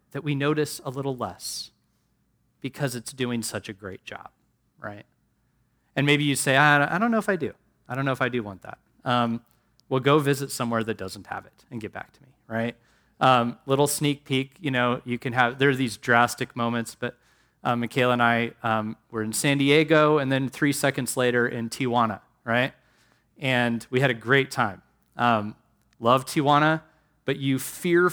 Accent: American